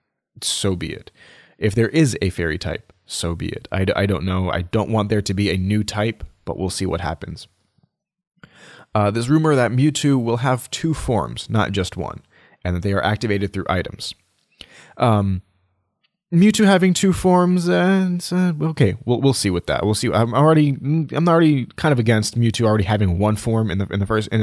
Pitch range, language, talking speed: 95-115 Hz, English, 200 wpm